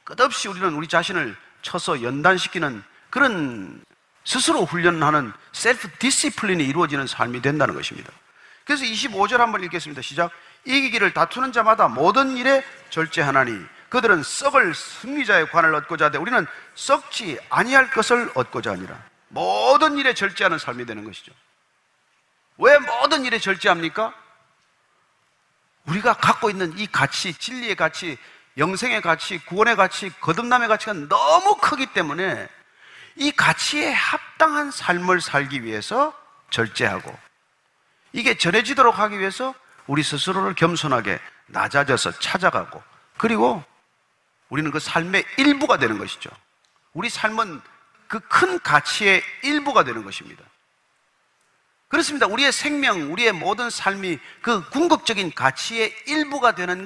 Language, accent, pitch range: Korean, native, 170-270 Hz